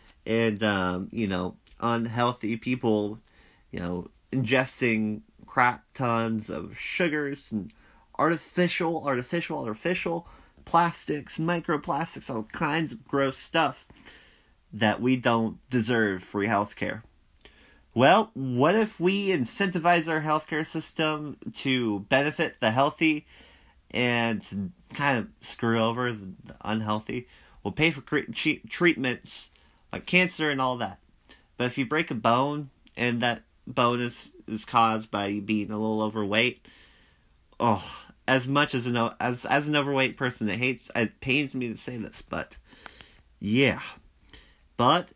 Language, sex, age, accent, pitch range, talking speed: English, male, 30-49, American, 110-150 Hz, 130 wpm